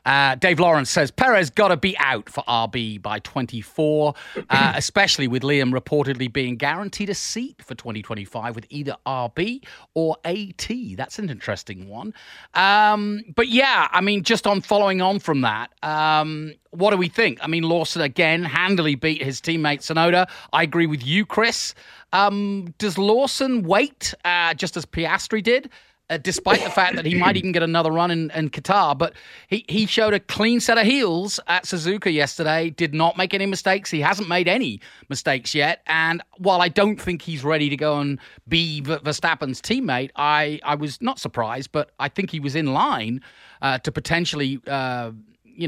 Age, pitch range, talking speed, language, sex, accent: 30-49, 135-190 Hz, 180 wpm, English, male, British